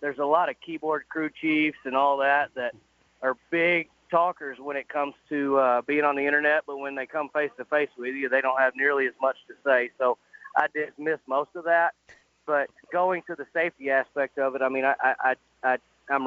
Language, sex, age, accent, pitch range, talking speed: English, male, 30-49, American, 125-150 Hz, 220 wpm